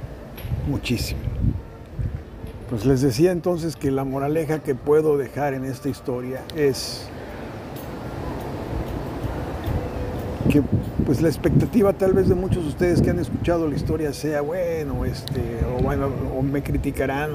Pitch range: 125-150 Hz